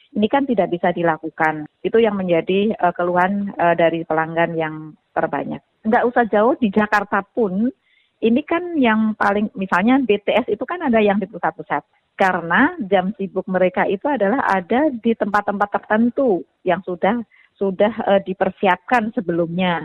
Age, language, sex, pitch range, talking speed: 30-49, Indonesian, female, 170-225 Hz, 150 wpm